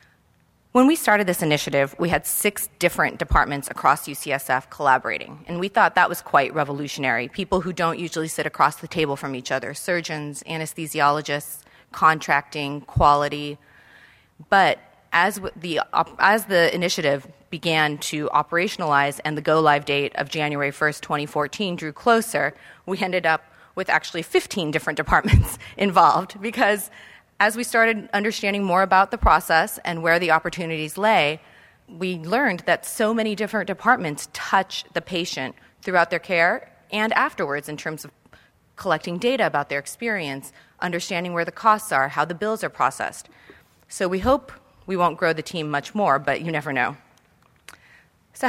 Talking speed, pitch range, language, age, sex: 155 wpm, 145-190 Hz, English, 30-49, female